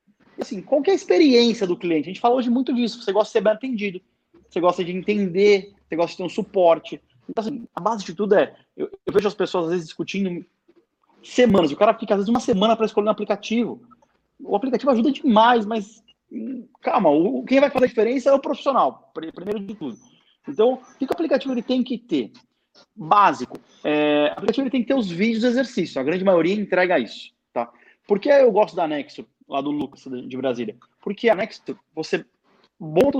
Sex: male